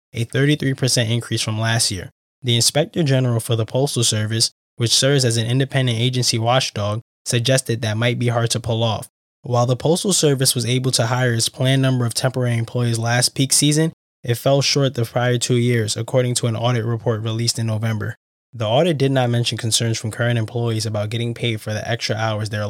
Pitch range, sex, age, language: 110-125 Hz, male, 20-39, English